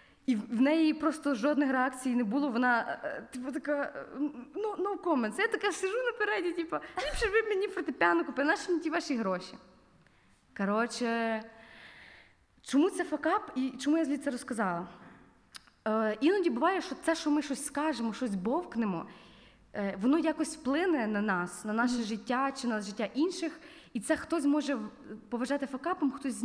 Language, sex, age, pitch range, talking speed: Ukrainian, female, 20-39, 225-310 Hz, 165 wpm